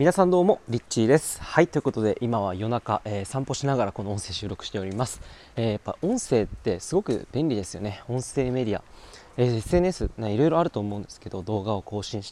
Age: 20-39